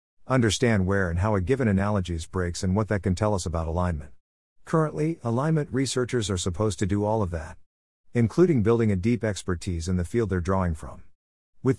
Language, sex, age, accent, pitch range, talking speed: English, male, 50-69, American, 90-120 Hz, 195 wpm